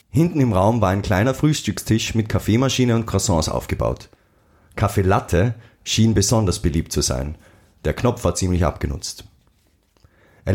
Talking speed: 140 wpm